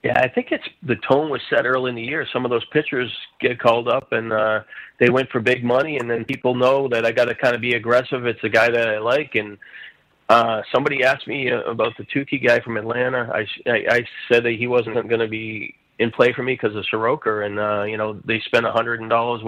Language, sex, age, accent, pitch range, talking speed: English, male, 40-59, American, 115-130 Hz, 245 wpm